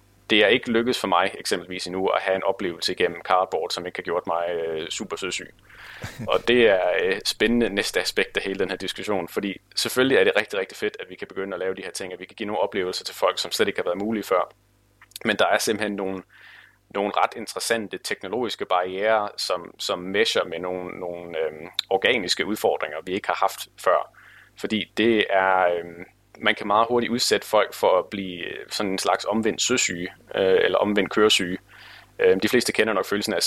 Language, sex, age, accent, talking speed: Danish, male, 30-49, native, 210 wpm